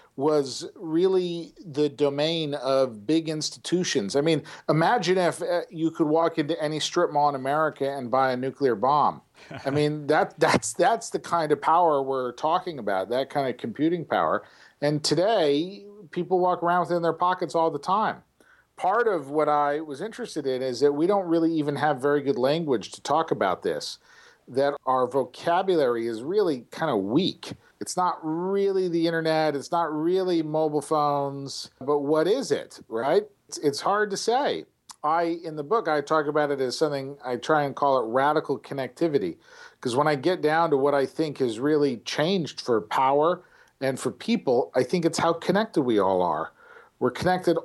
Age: 50-69